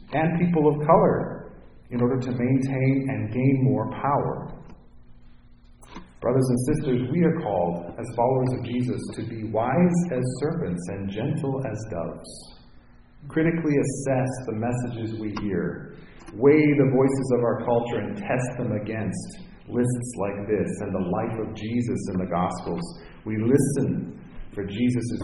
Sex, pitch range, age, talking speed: male, 115-160 Hz, 40-59, 145 wpm